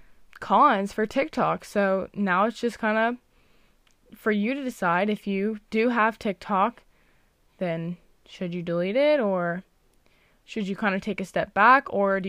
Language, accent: English, American